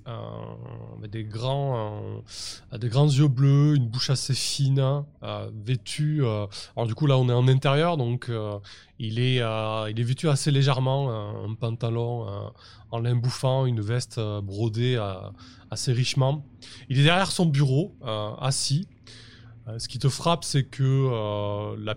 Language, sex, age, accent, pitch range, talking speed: French, male, 20-39, French, 110-140 Hz, 170 wpm